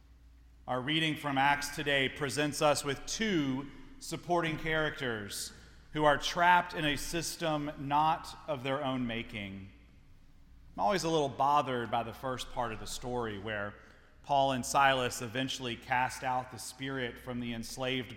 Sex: male